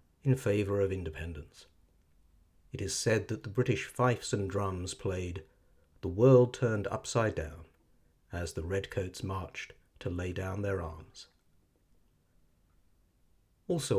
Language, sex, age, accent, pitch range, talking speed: English, male, 50-69, British, 85-125 Hz, 125 wpm